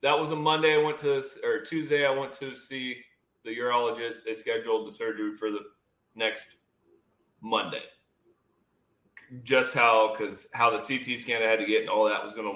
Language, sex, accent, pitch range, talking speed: English, male, American, 120-195 Hz, 185 wpm